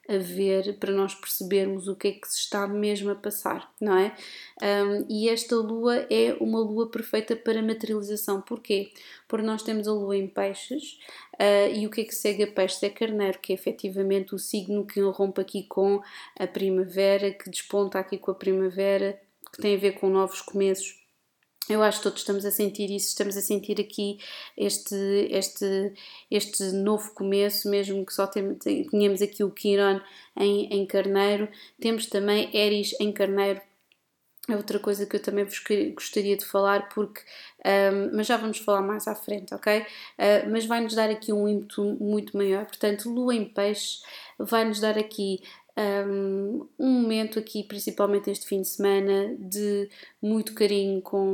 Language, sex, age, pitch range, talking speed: Portuguese, female, 20-39, 195-210 Hz, 175 wpm